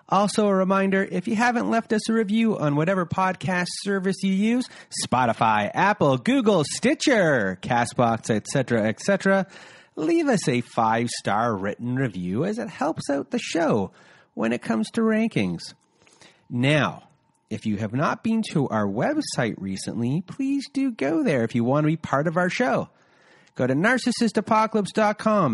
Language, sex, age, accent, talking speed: English, male, 30-49, American, 155 wpm